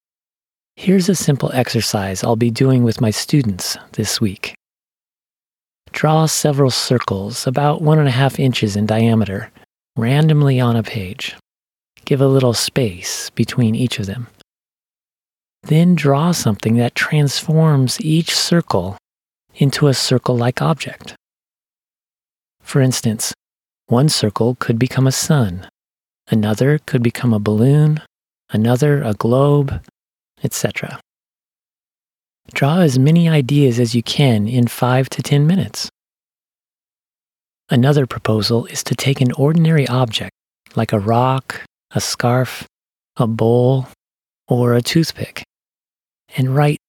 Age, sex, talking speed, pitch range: 40-59, male, 120 wpm, 115-145 Hz